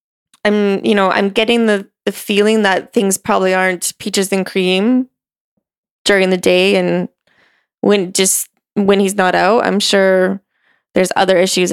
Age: 20-39